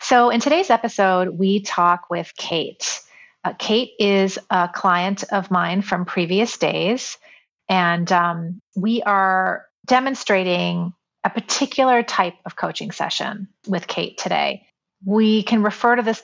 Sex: female